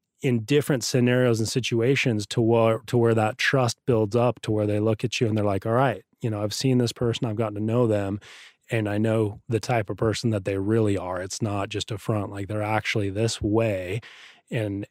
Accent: American